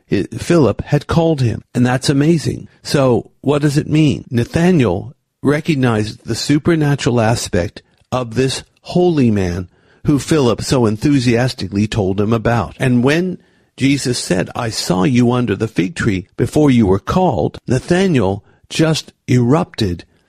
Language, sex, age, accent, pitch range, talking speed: English, male, 50-69, American, 115-150 Hz, 135 wpm